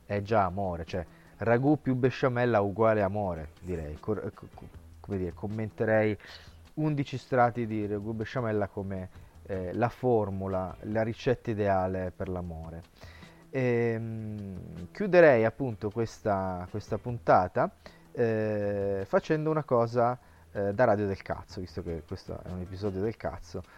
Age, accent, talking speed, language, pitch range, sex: 30-49, native, 125 wpm, Italian, 95-120 Hz, male